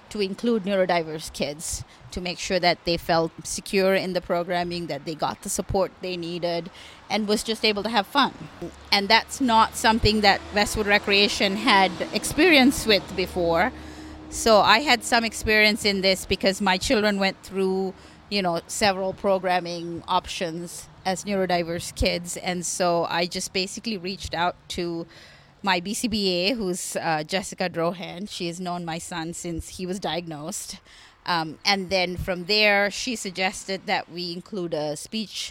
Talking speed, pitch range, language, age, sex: 160 wpm, 170-205 Hz, English, 30-49, female